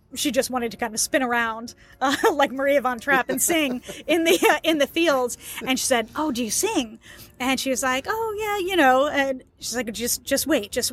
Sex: female